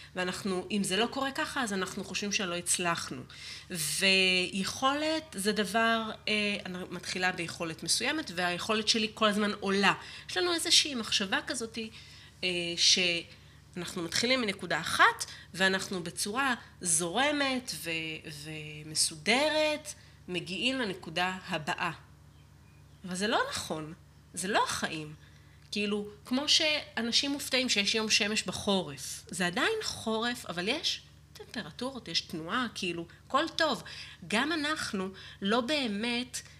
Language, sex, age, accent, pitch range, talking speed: Hebrew, female, 30-49, native, 175-230 Hz, 115 wpm